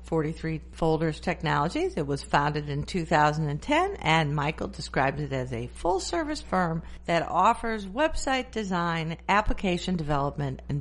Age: 50-69